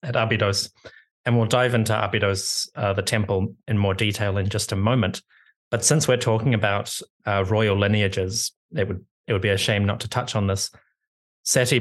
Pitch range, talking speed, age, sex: 95-115 Hz, 195 wpm, 30-49, male